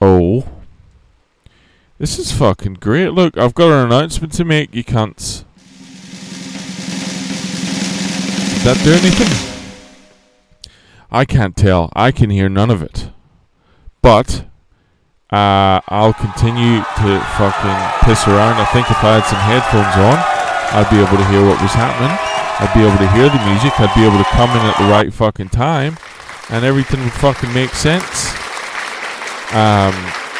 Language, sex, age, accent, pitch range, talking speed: English, male, 20-39, American, 100-150 Hz, 150 wpm